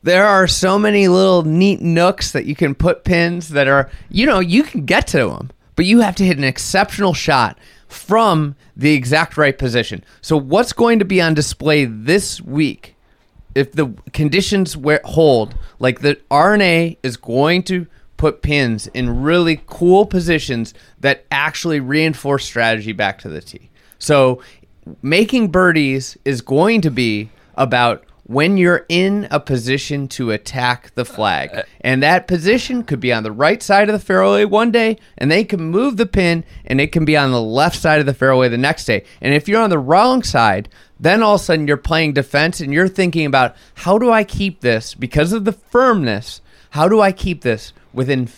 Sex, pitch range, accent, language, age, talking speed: male, 130-190 Hz, American, English, 30-49, 190 wpm